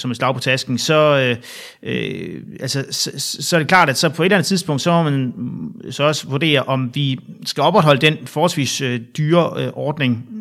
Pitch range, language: 130-155 Hz, Danish